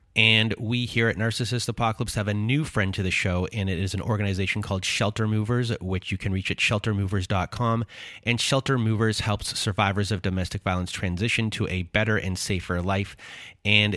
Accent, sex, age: American, male, 30-49